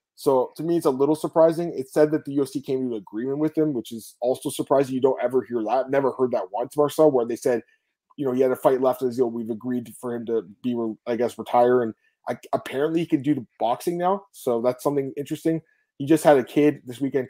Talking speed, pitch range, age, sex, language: 255 wpm, 120-150 Hz, 20-39, male, English